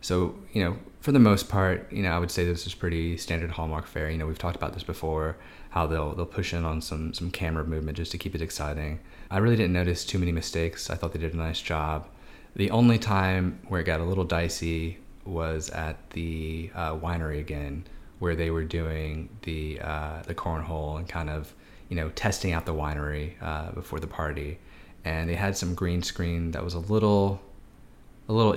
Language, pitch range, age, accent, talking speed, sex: English, 80-90 Hz, 20-39, American, 215 wpm, male